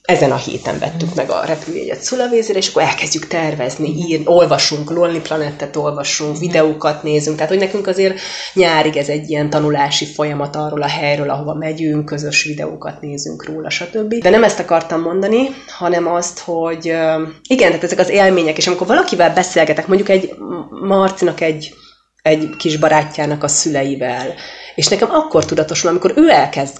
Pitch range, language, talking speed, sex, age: 150-180 Hz, Hungarian, 160 wpm, female, 30-49